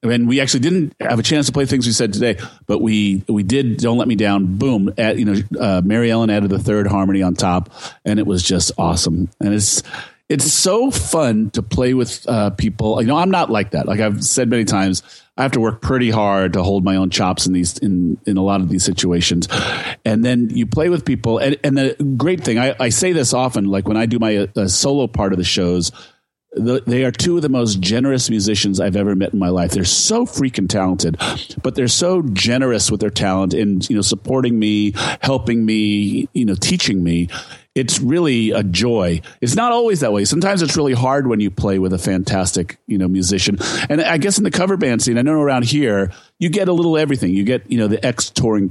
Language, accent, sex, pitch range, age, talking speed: English, American, male, 100-130 Hz, 40-59, 235 wpm